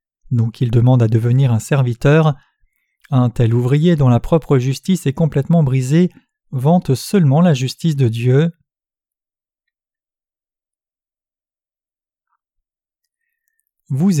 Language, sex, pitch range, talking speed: French, male, 125-160 Hz, 100 wpm